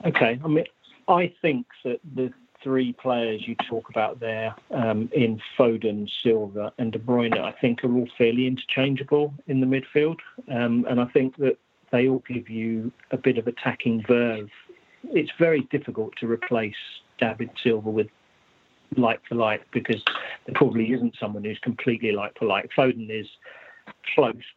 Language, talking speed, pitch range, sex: English, 160 wpm, 115-130 Hz, male